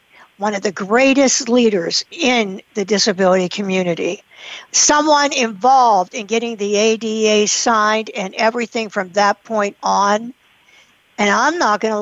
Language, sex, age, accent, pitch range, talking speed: English, female, 60-79, American, 200-240 Hz, 135 wpm